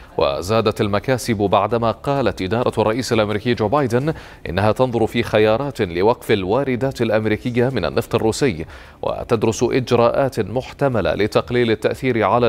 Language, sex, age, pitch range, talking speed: Arabic, male, 30-49, 105-125 Hz, 120 wpm